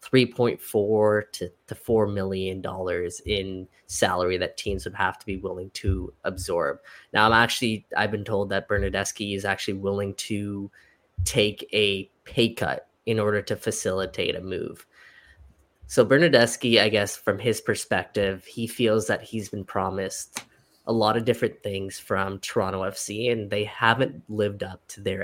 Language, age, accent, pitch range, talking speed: English, 10-29, American, 95-115 Hz, 155 wpm